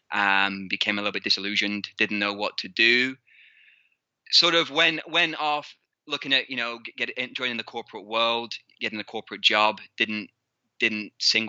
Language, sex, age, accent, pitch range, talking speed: English, male, 20-39, British, 100-115 Hz, 165 wpm